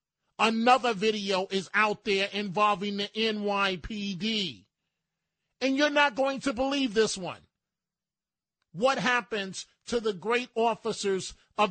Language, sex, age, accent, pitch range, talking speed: English, male, 40-59, American, 195-255 Hz, 120 wpm